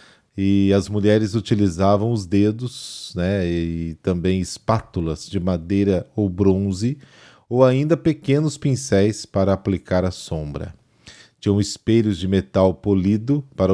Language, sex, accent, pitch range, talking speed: Portuguese, male, Brazilian, 95-115 Hz, 120 wpm